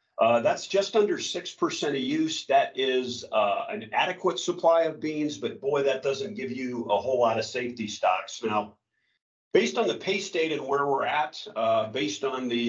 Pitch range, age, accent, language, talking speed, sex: 110-140 Hz, 50-69, American, English, 195 wpm, male